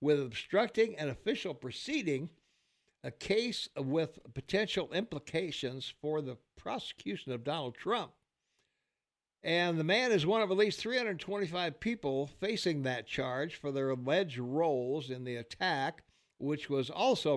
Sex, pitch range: male, 130-170 Hz